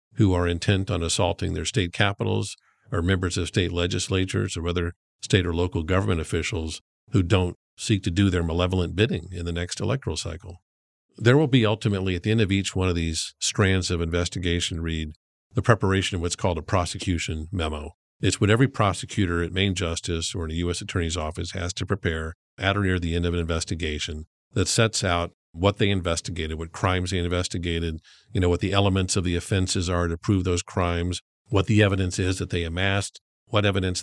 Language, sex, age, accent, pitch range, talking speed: English, male, 50-69, American, 85-105 Hz, 200 wpm